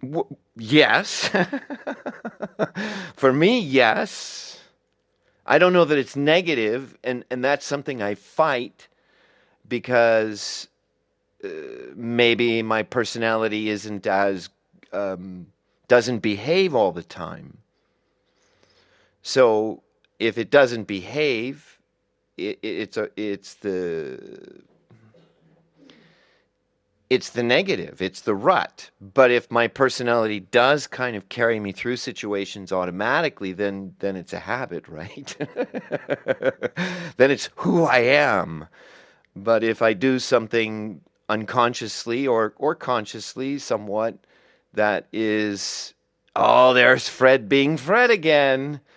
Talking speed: 105 wpm